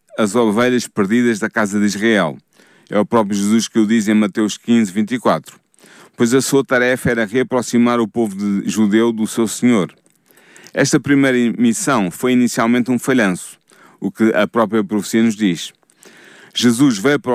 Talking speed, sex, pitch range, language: 165 wpm, male, 105-130 Hz, Portuguese